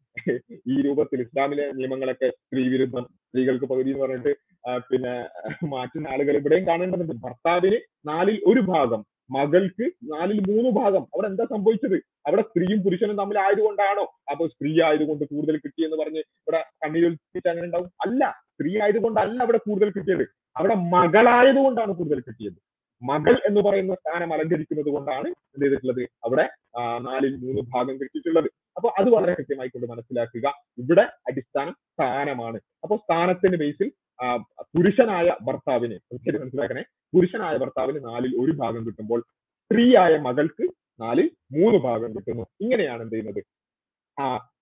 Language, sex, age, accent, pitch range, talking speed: Malayalam, male, 30-49, native, 130-195 Hz, 130 wpm